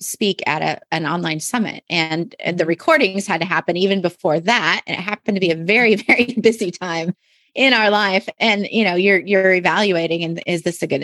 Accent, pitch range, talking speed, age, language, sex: American, 175-235 Hz, 215 wpm, 30-49, English, female